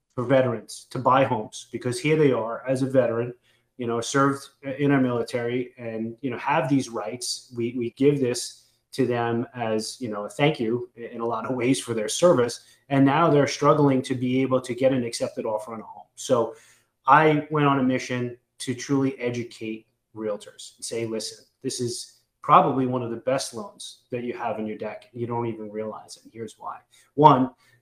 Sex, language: male, English